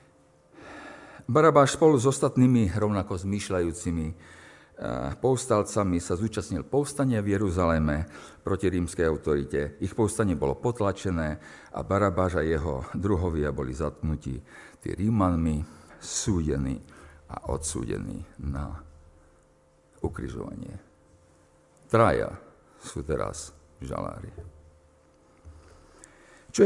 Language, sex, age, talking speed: Slovak, male, 50-69, 85 wpm